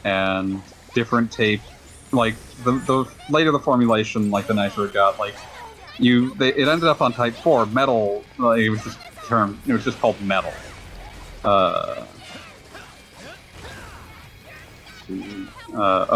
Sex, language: male, English